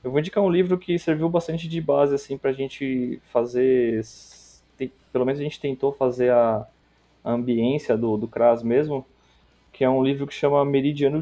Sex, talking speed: male, 195 wpm